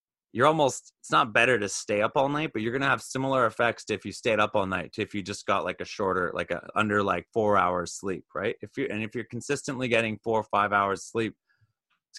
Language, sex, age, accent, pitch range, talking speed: English, male, 30-49, American, 100-145 Hz, 260 wpm